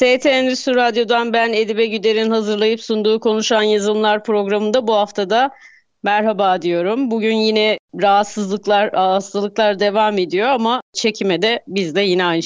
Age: 30-49